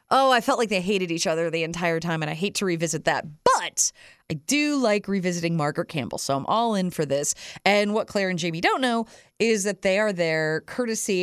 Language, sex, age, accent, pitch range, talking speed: English, female, 30-49, American, 165-250 Hz, 230 wpm